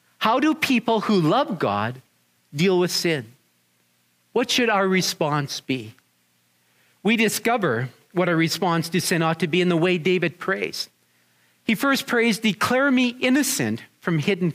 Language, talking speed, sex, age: English, 155 wpm, male, 50-69